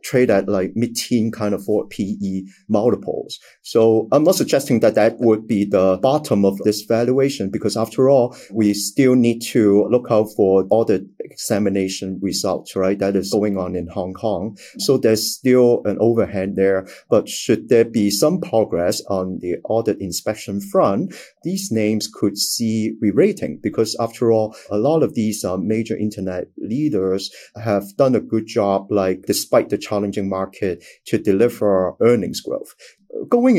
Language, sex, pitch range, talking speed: English, male, 100-120 Hz, 170 wpm